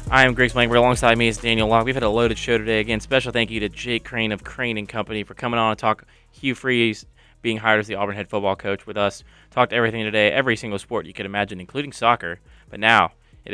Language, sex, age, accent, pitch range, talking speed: English, male, 20-39, American, 105-120 Hz, 255 wpm